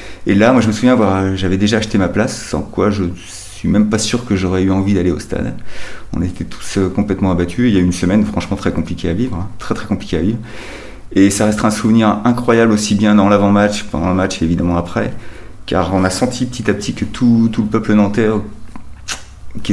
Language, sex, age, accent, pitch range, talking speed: French, male, 30-49, French, 85-105 Hz, 230 wpm